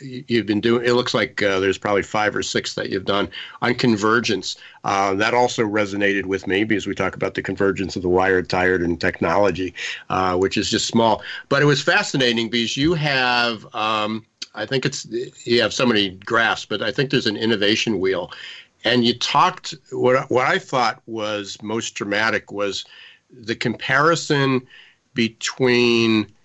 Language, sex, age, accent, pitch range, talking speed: English, male, 50-69, American, 100-125 Hz, 175 wpm